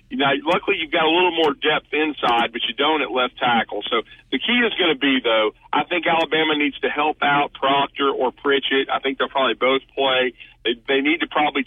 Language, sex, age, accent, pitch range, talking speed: English, male, 40-59, American, 130-160 Hz, 225 wpm